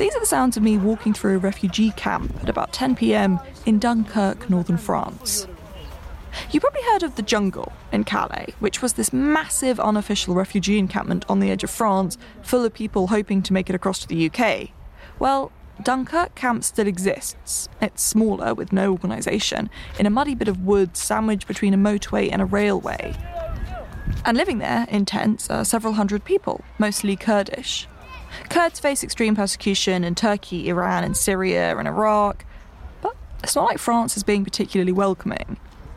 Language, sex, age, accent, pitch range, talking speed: English, female, 20-39, British, 195-235 Hz, 170 wpm